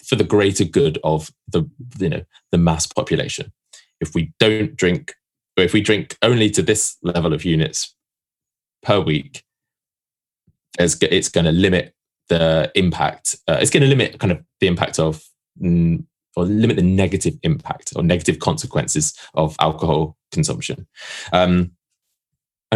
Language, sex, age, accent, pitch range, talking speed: English, male, 20-39, British, 80-100 Hz, 150 wpm